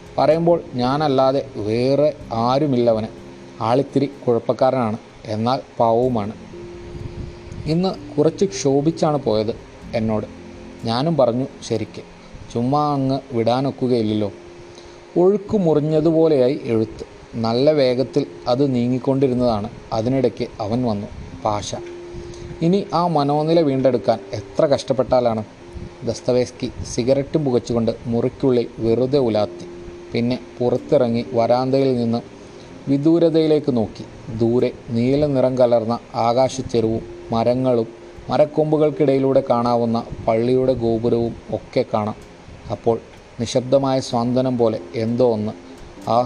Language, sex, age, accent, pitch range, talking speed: Malayalam, male, 30-49, native, 115-135 Hz, 90 wpm